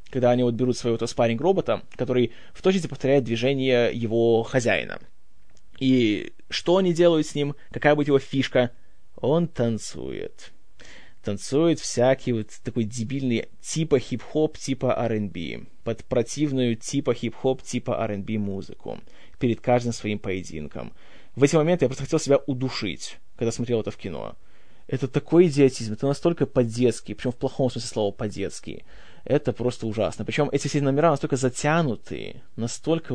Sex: male